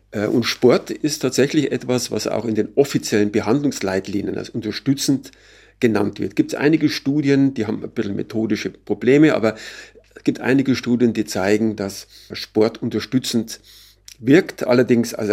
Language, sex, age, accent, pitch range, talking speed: German, male, 50-69, German, 105-125 Hz, 150 wpm